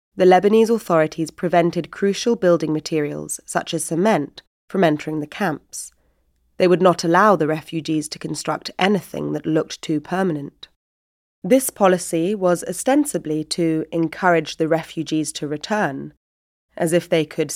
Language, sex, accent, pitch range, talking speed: English, female, British, 155-185 Hz, 140 wpm